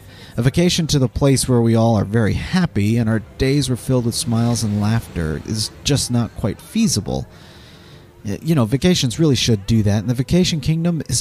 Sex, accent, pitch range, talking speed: male, American, 100-130 Hz, 200 wpm